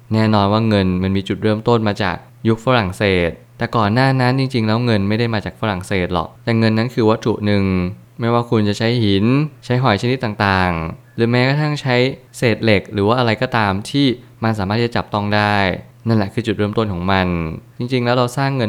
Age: 20-39